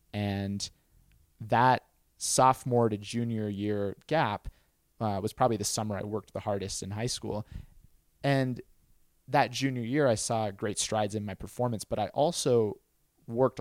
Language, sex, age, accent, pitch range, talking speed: English, male, 20-39, American, 100-115 Hz, 150 wpm